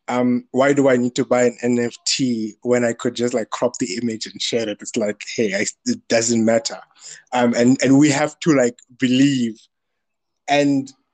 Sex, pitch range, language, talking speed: male, 125-155 Hz, English, 195 wpm